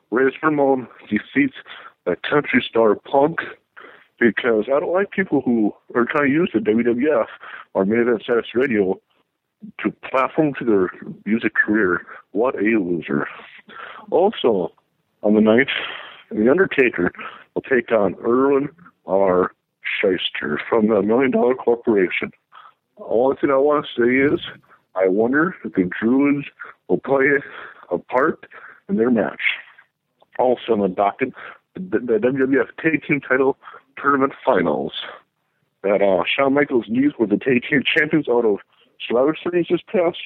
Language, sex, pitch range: English, male, 115-155 Hz